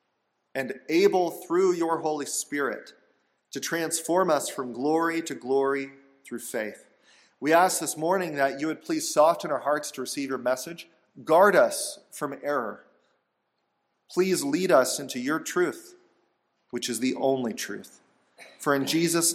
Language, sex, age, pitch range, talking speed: English, male, 40-59, 130-165 Hz, 150 wpm